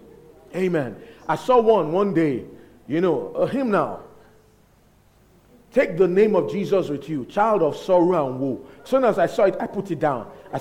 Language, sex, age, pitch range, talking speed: English, male, 50-69, 165-255 Hz, 180 wpm